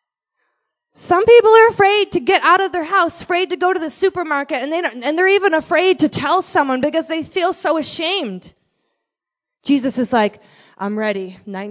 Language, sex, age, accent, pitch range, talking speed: English, female, 20-39, American, 275-350 Hz, 190 wpm